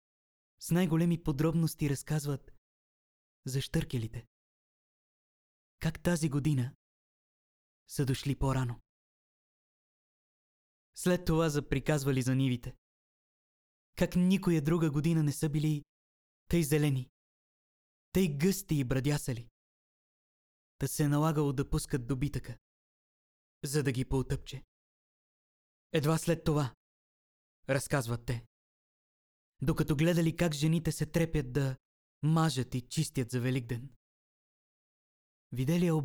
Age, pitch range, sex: 20-39, 125-155 Hz, male